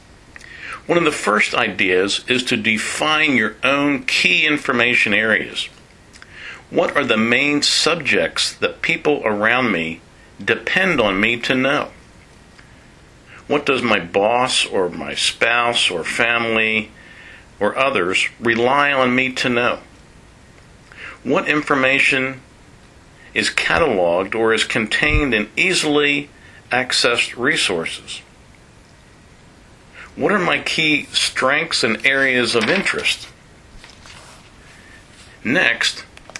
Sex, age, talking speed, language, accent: male, 50-69, 105 wpm, English, American